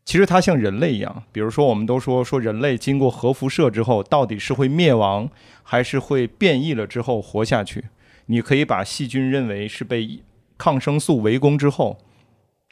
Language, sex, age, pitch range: Chinese, male, 30-49, 110-140 Hz